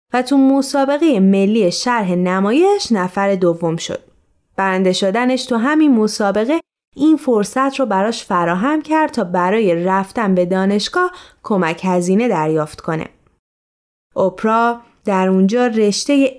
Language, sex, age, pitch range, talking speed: Persian, female, 20-39, 190-260 Hz, 115 wpm